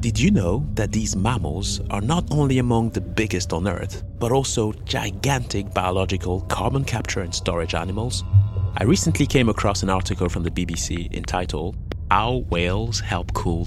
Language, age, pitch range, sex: English, 30-49, 85-105 Hz, male